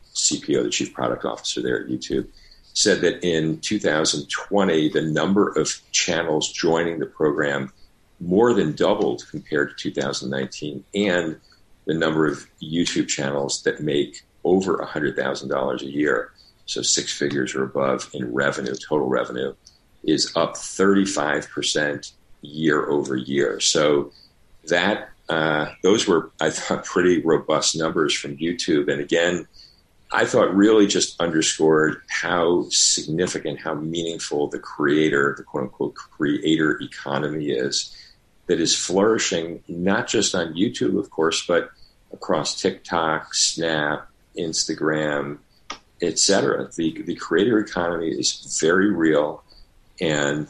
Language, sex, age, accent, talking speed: English, male, 50-69, American, 130 wpm